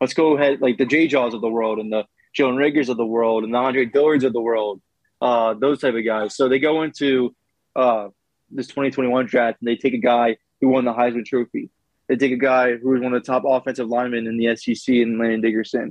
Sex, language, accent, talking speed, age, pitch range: male, English, American, 240 wpm, 20-39, 120-140 Hz